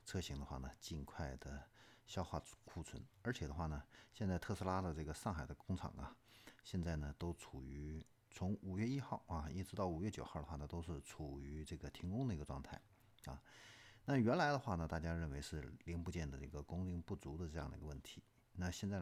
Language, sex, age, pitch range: Chinese, male, 50-69, 75-105 Hz